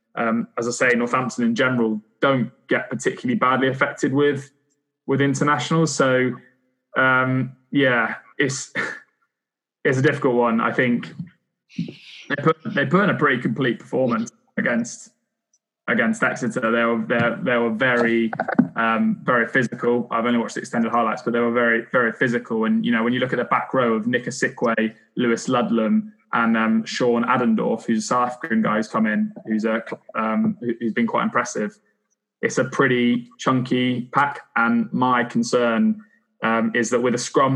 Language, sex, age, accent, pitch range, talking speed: English, male, 20-39, British, 115-140 Hz, 170 wpm